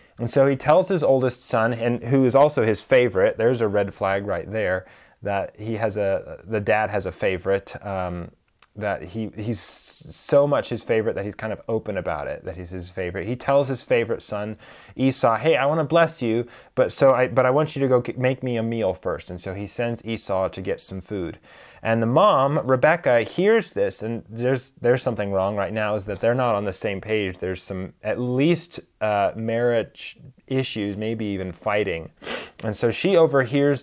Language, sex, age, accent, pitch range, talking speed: English, male, 20-39, American, 105-135 Hz, 210 wpm